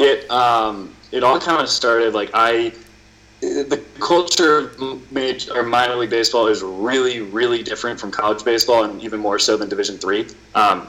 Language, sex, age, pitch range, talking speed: English, male, 20-39, 105-125 Hz, 175 wpm